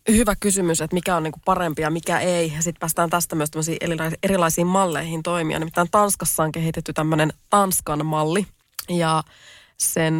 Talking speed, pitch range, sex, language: 160 wpm, 160-185 Hz, female, Finnish